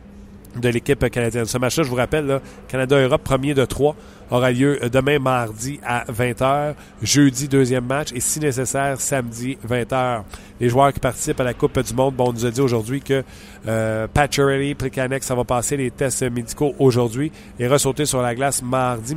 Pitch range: 115-135 Hz